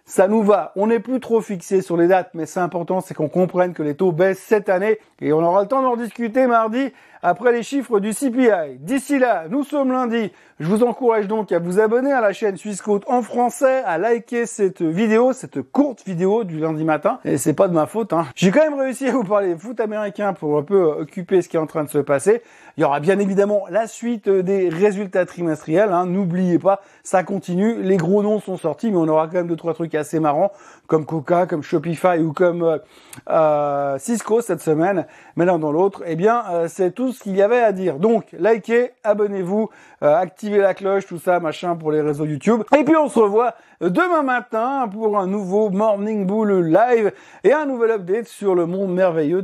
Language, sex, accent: French, male, French